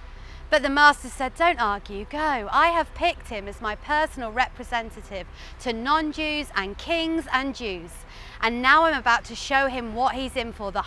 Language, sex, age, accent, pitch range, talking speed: English, female, 40-59, British, 215-275 Hz, 180 wpm